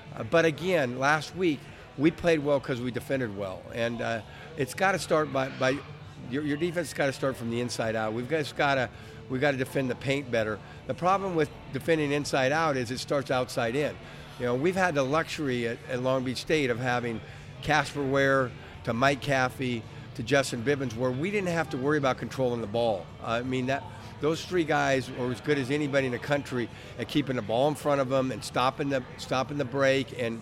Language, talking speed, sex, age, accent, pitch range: English, 220 wpm, male, 50-69, American, 120-145 Hz